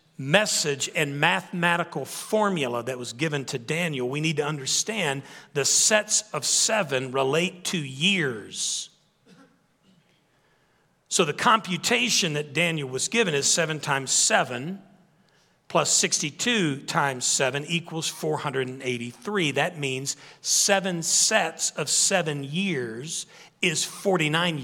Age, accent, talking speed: 40-59, American, 110 wpm